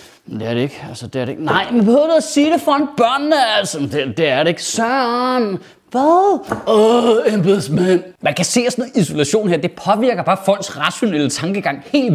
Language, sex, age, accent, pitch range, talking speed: Danish, male, 30-49, native, 160-255 Hz, 220 wpm